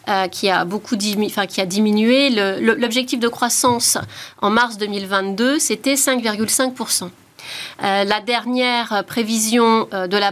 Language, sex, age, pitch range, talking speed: French, female, 30-49, 200-255 Hz, 100 wpm